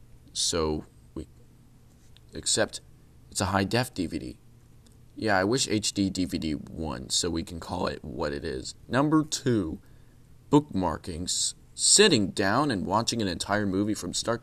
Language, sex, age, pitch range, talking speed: English, male, 20-39, 95-120 Hz, 140 wpm